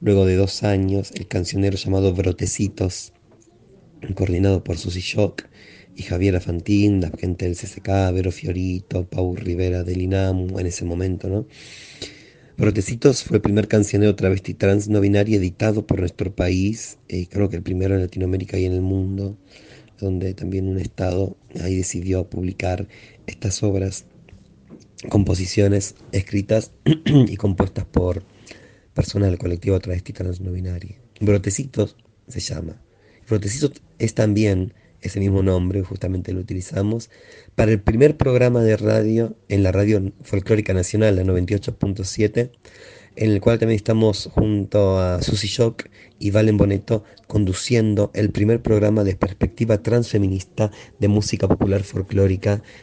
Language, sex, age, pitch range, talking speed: Spanish, male, 30-49, 95-110 Hz, 135 wpm